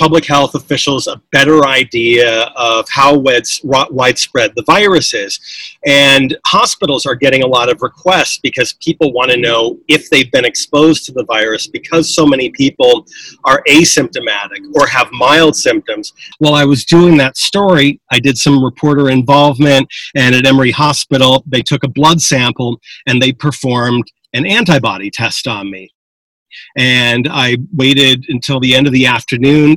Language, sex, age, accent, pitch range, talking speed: English, male, 40-59, American, 125-155 Hz, 160 wpm